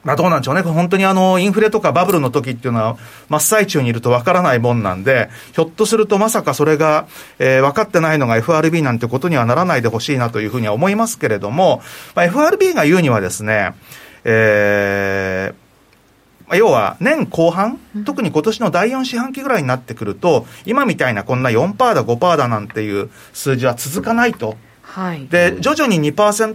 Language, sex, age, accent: Japanese, male, 40-59, native